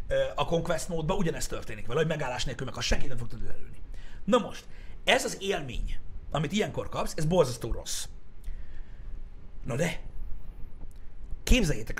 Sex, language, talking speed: male, Hungarian, 145 wpm